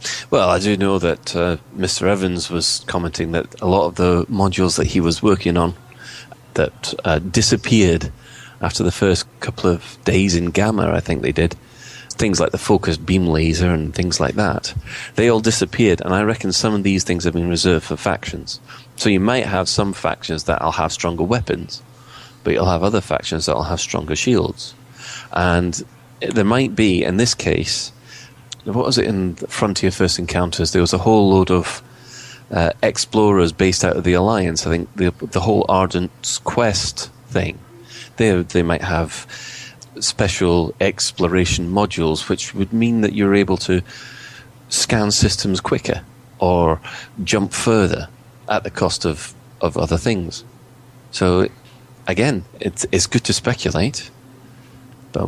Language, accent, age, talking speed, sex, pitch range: English, British, 30-49, 165 wpm, male, 85-115 Hz